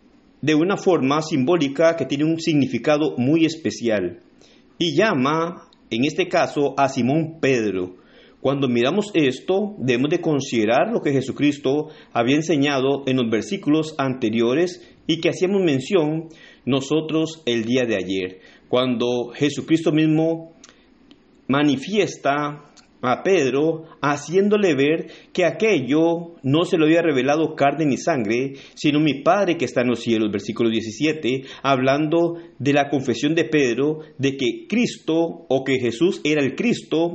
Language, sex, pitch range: Spanish, male, 125-160 Hz